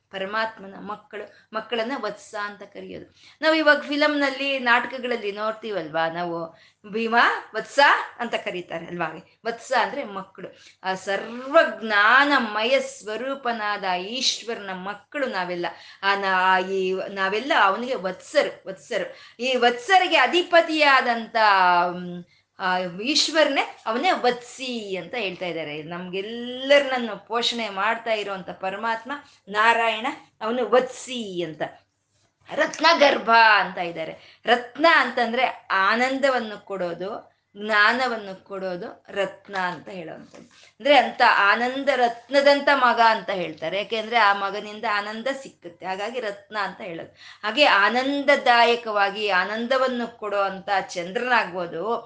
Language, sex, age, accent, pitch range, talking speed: Kannada, female, 20-39, native, 195-255 Hz, 95 wpm